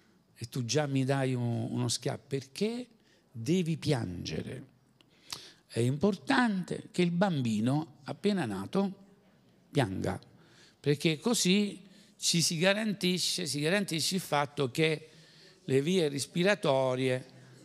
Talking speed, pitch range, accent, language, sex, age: 105 wpm, 130-185 Hz, native, Italian, male, 60-79